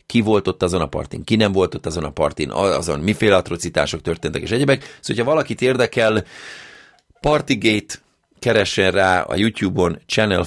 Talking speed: 165 wpm